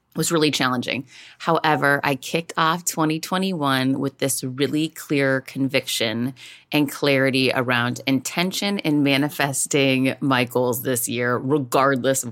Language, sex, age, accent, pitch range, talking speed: English, female, 30-49, American, 130-165 Hz, 120 wpm